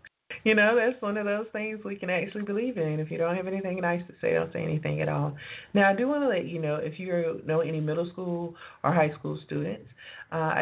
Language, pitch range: English, 135-165 Hz